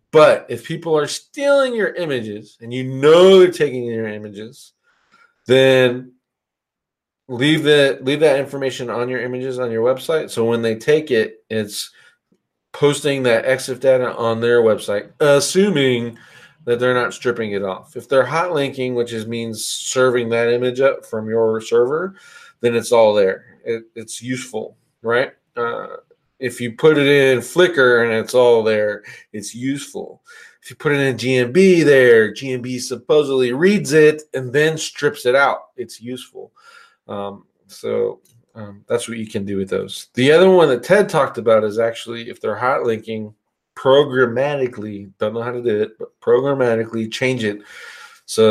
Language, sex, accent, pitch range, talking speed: English, male, American, 115-155 Hz, 165 wpm